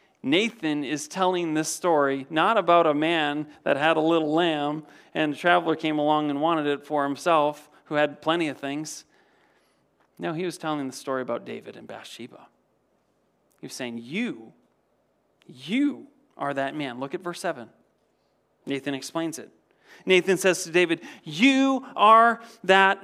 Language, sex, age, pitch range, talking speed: English, male, 40-59, 160-235 Hz, 160 wpm